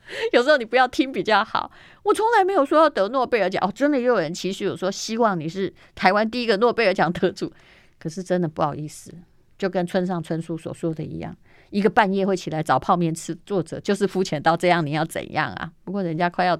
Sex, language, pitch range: female, Chinese, 165-210 Hz